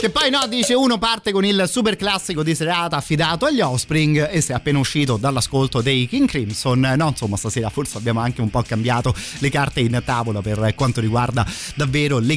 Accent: native